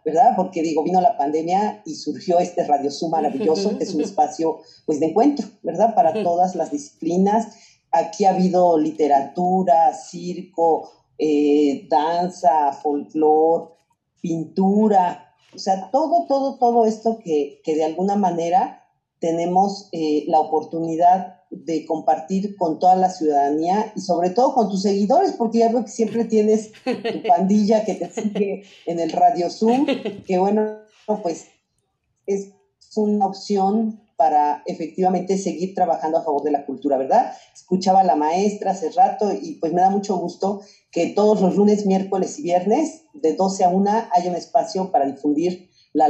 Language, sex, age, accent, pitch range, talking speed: Spanish, female, 40-59, Mexican, 160-210 Hz, 155 wpm